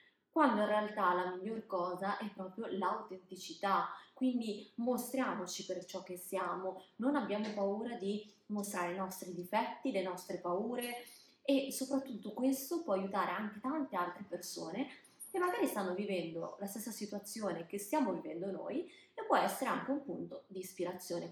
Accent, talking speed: native, 150 wpm